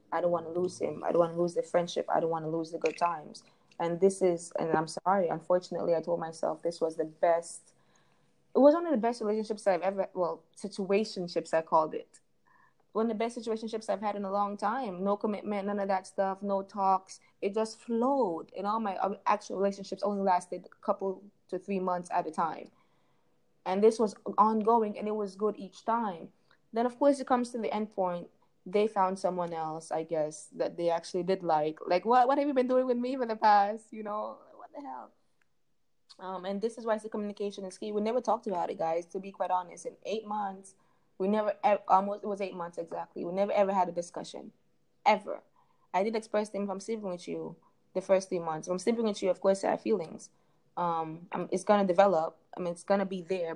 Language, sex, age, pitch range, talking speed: English, female, 20-39, 175-215 Hz, 230 wpm